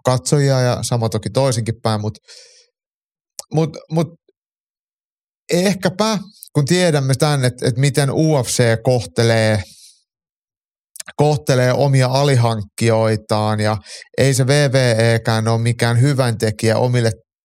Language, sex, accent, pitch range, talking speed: Finnish, male, native, 110-140 Hz, 100 wpm